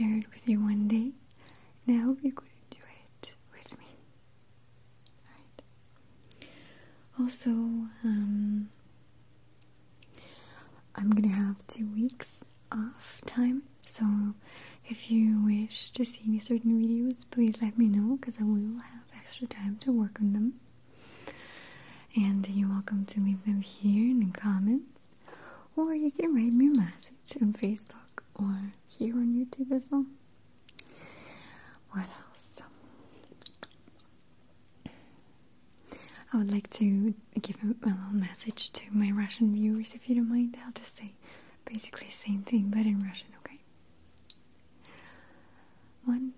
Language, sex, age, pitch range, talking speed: English, female, 30-49, 205-245 Hz, 135 wpm